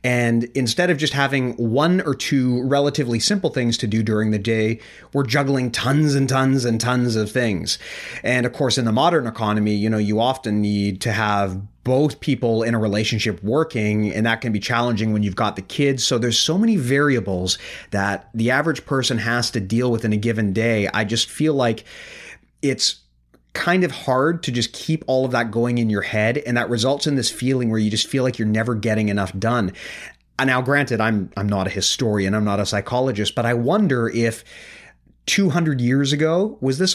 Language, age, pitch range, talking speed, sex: English, 30-49, 110-140 Hz, 205 wpm, male